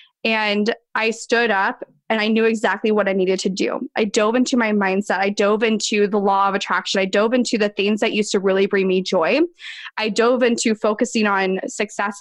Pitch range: 220-295 Hz